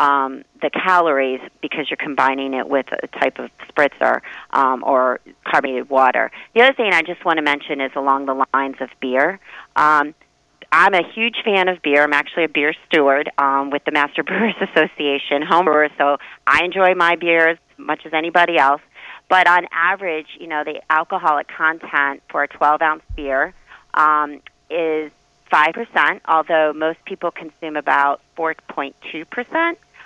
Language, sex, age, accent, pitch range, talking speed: English, female, 30-49, American, 145-175 Hz, 160 wpm